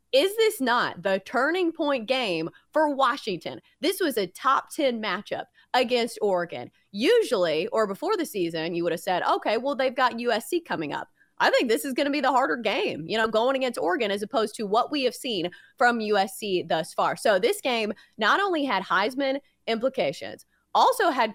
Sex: female